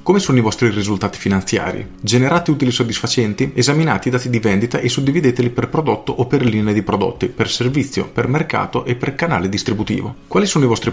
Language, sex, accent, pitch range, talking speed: Italian, male, native, 105-135 Hz, 190 wpm